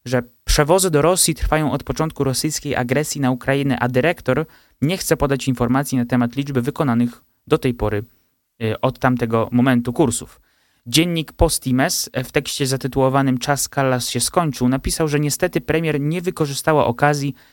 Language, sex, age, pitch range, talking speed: Polish, male, 20-39, 125-155 Hz, 155 wpm